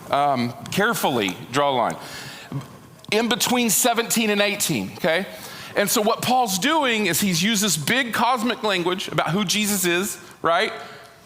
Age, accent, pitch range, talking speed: 40-59, American, 145-215 Hz, 150 wpm